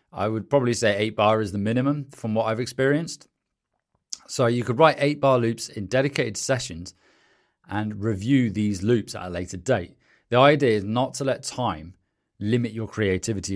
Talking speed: 180 wpm